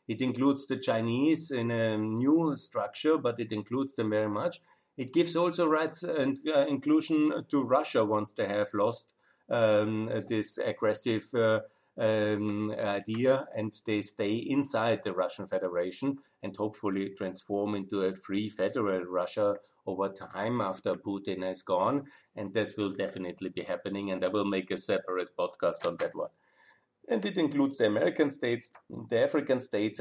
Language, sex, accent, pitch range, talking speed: German, male, German, 100-130 Hz, 155 wpm